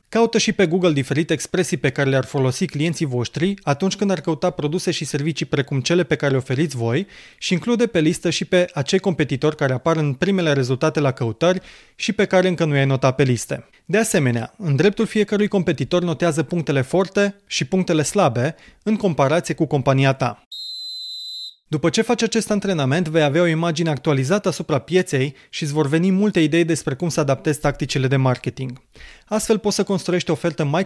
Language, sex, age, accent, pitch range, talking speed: Romanian, male, 20-39, native, 140-185 Hz, 190 wpm